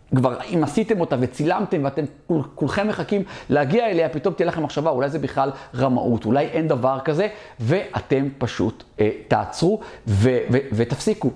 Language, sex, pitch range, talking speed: Hebrew, male, 125-170 Hz, 165 wpm